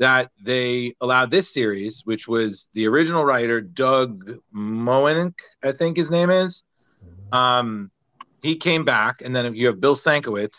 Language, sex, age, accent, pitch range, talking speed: English, male, 30-49, American, 115-145 Hz, 155 wpm